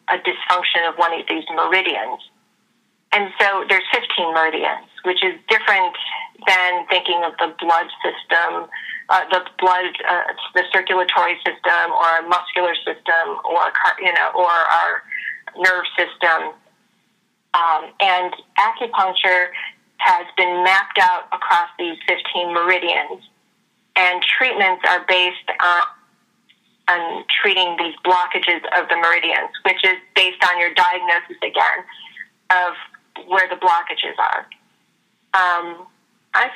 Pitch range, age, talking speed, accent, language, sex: 175-225 Hz, 40-59, 125 wpm, American, English, female